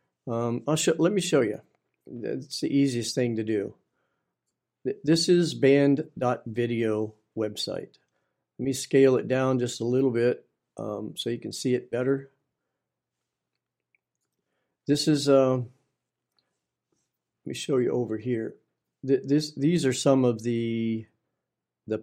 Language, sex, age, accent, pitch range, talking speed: English, male, 50-69, American, 115-140 Hz, 135 wpm